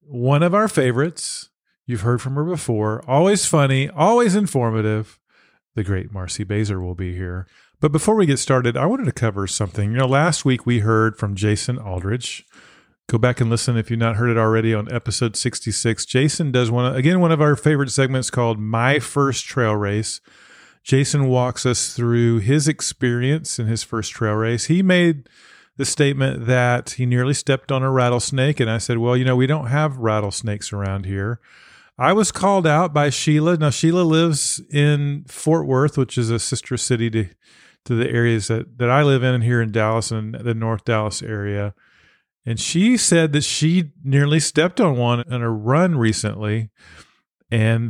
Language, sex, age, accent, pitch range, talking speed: English, male, 40-59, American, 115-145 Hz, 185 wpm